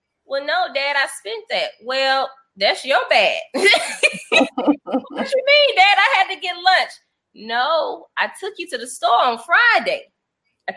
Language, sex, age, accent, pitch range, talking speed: English, female, 20-39, American, 195-280 Hz, 165 wpm